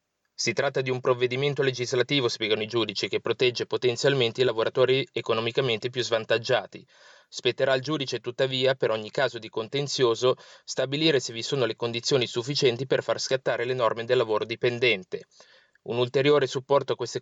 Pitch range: 120-145 Hz